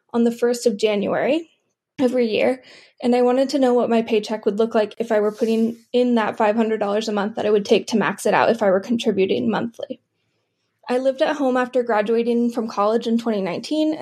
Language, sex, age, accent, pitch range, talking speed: English, female, 10-29, American, 220-250 Hz, 215 wpm